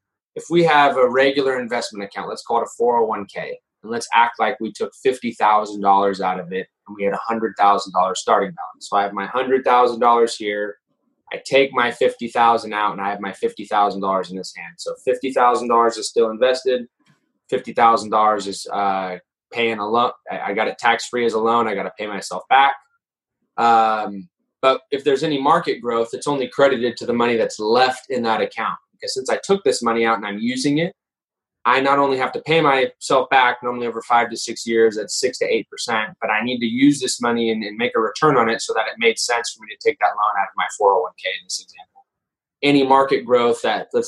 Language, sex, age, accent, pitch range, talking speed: English, male, 20-39, American, 105-165 Hz, 210 wpm